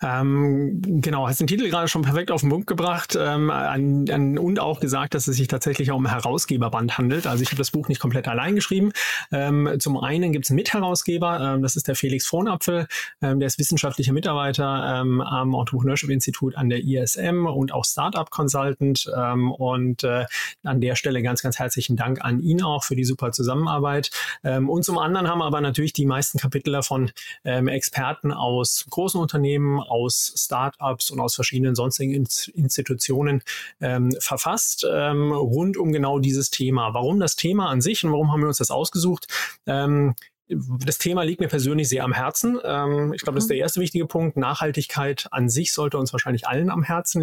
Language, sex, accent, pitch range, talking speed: German, male, German, 130-155 Hz, 190 wpm